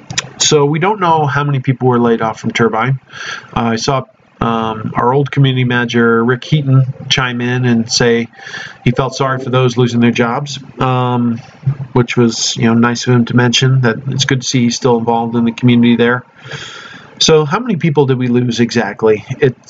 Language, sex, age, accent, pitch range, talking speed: English, male, 40-59, American, 120-140 Hz, 200 wpm